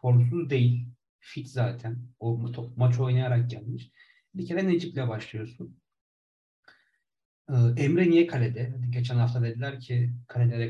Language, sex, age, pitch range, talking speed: Turkish, male, 40-59, 115-135 Hz, 125 wpm